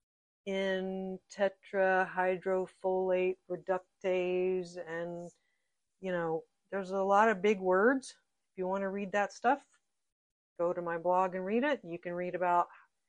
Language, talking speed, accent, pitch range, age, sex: English, 140 wpm, American, 175-210 Hz, 50-69, female